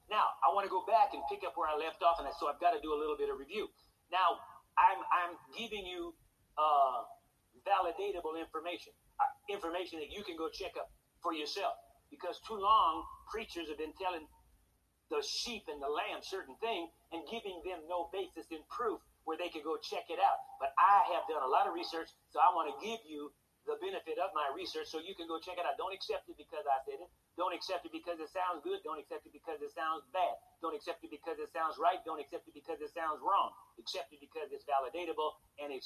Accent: American